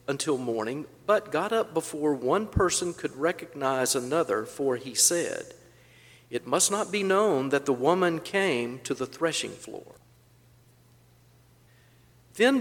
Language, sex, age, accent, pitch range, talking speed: English, male, 50-69, American, 125-170 Hz, 135 wpm